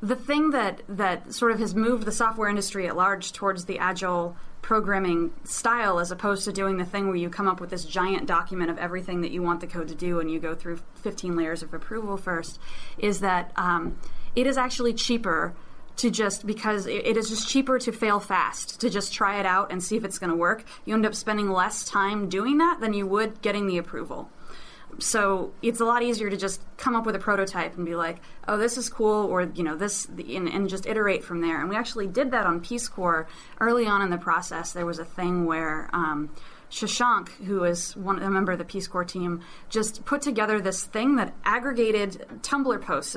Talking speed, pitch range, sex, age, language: 220 wpm, 180-220 Hz, female, 20-39, English